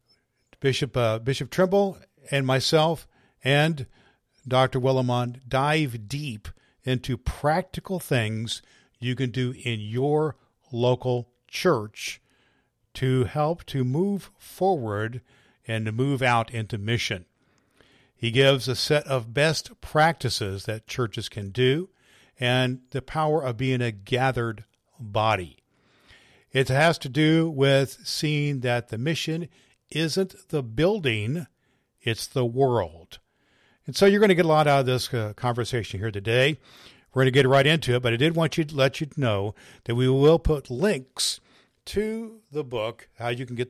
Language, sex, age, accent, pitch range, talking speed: English, male, 50-69, American, 115-150 Hz, 150 wpm